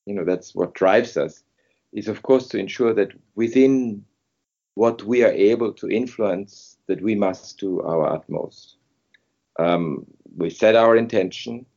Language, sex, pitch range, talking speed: English, male, 95-115 Hz, 155 wpm